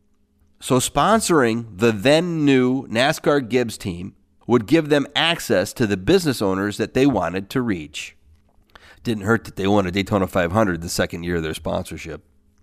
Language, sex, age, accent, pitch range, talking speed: English, male, 40-59, American, 85-130 Hz, 160 wpm